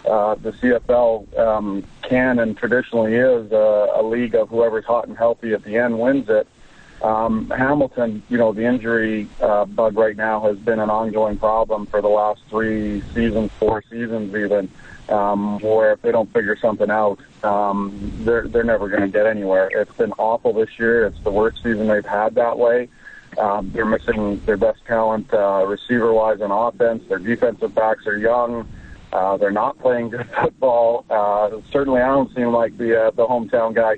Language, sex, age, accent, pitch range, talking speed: English, male, 40-59, American, 105-115 Hz, 185 wpm